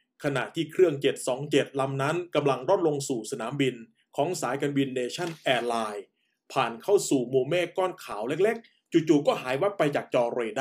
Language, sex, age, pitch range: Thai, male, 20-39, 135-185 Hz